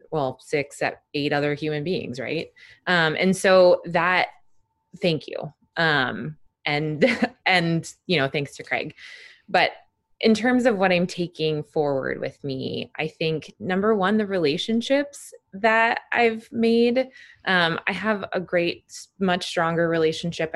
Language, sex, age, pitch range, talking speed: English, female, 20-39, 155-225 Hz, 140 wpm